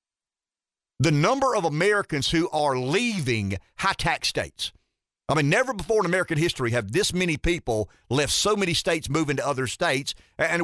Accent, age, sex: American, 50-69, male